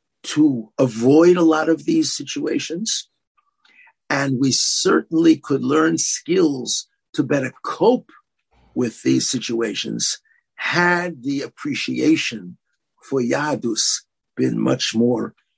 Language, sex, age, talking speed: English, male, 60-79, 105 wpm